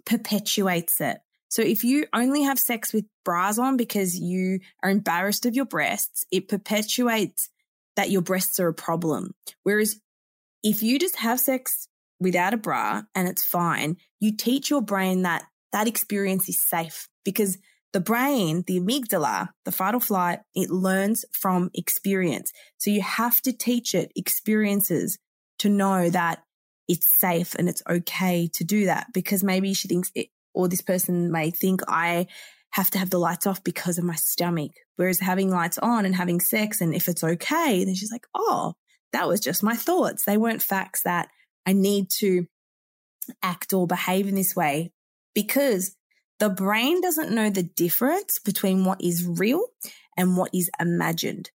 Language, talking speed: English, 170 wpm